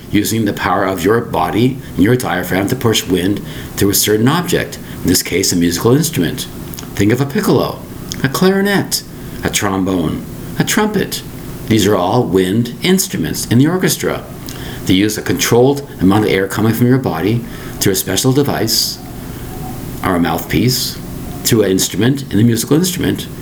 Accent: American